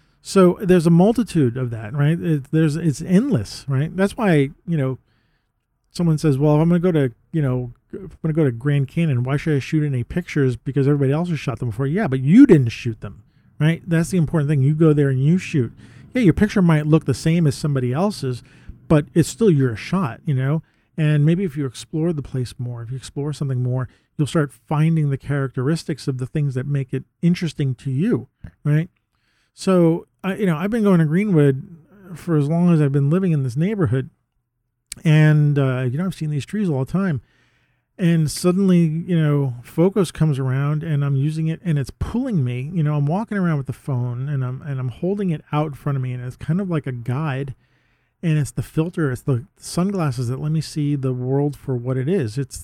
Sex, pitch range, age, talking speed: male, 130-165 Hz, 40-59, 230 wpm